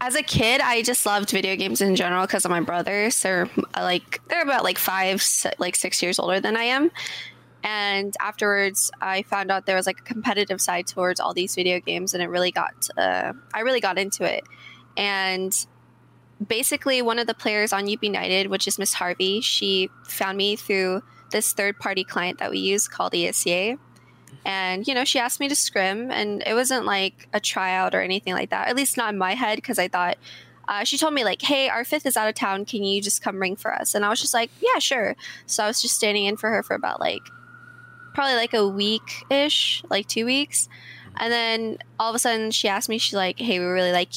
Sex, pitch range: female, 185-230 Hz